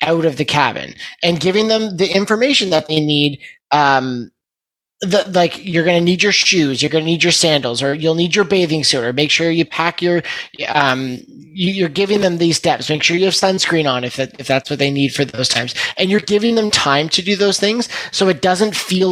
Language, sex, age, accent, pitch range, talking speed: English, male, 20-39, American, 150-195 Hz, 225 wpm